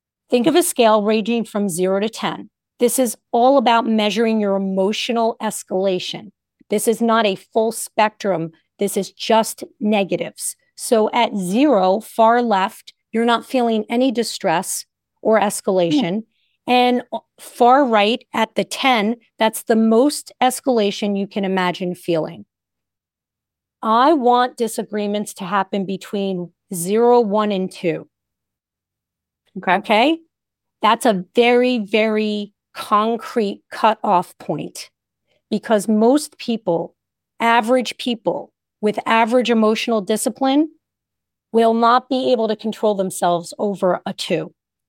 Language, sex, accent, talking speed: English, female, American, 120 wpm